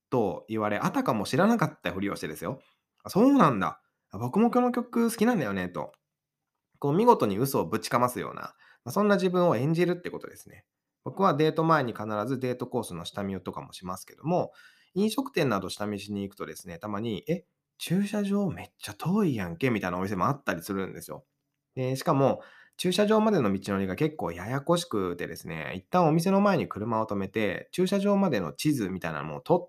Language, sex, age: Japanese, male, 20-39